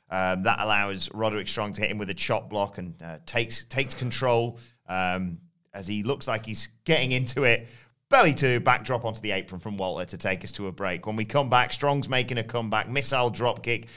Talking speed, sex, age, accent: 225 wpm, male, 30-49, British